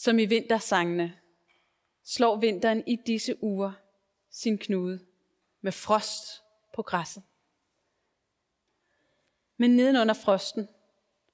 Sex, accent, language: female, native, Danish